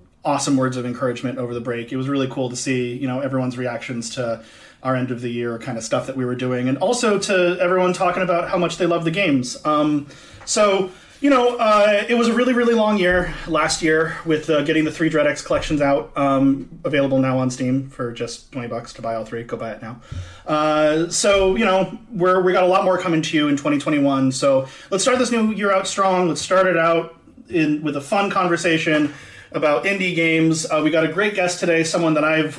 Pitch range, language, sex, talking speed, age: 135-180 Hz, English, male, 230 wpm, 30-49